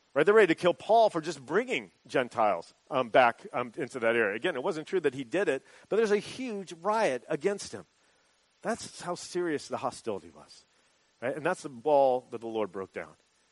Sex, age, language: male, 40-59, English